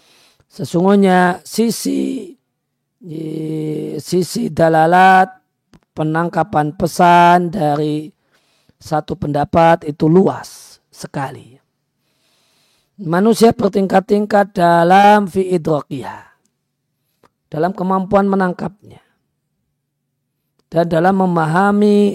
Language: Indonesian